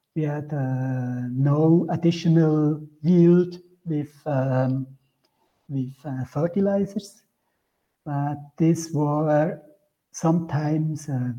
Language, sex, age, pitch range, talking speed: Danish, male, 60-79, 130-155 Hz, 85 wpm